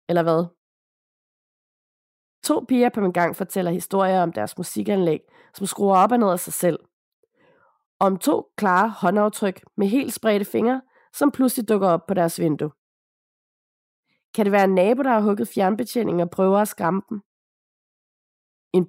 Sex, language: female, Danish